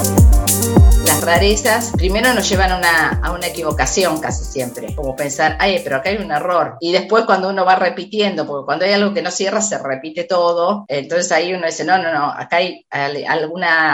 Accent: Argentinian